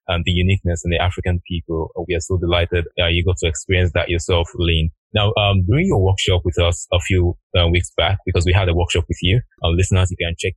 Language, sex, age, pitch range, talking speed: English, male, 20-39, 85-100 Hz, 245 wpm